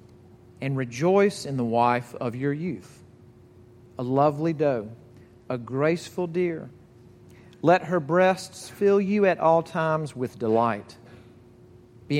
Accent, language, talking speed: American, English, 125 wpm